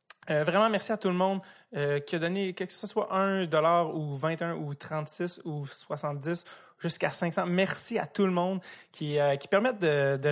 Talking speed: 210 wpm